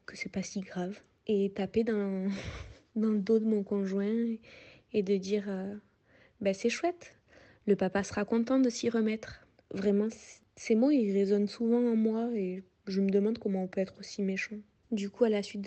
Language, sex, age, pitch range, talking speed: French, female, 20-39, 195-220 Hz, 205 wpm